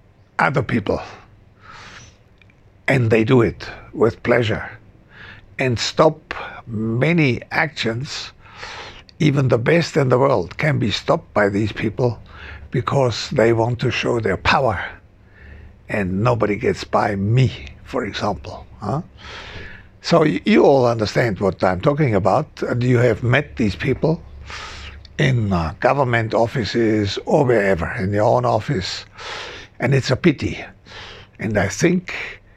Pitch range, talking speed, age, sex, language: 100-125 Hz, 125 wpm, 60-79, male, German